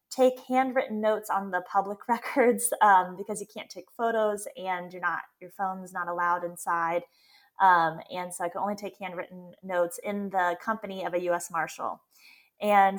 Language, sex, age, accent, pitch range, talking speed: English, female, 20-39, American, 180-210 Hz, 175 wpm